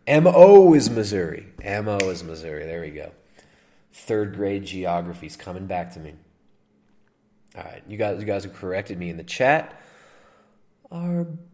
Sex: male